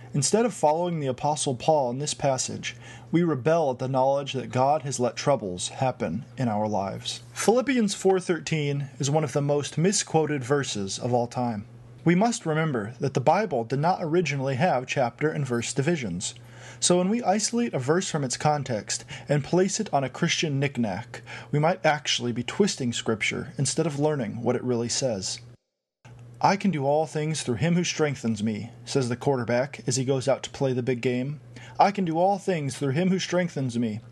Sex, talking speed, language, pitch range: male, 195 wpm, English, 120-160 Hz